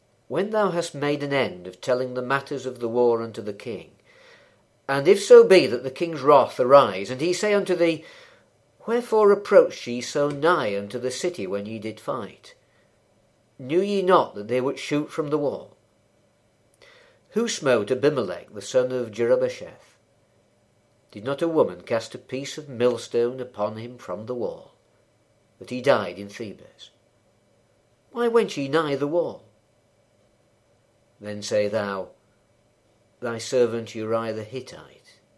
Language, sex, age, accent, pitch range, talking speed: English, male, 50-69, British, 115-175 Hz, 155 wpm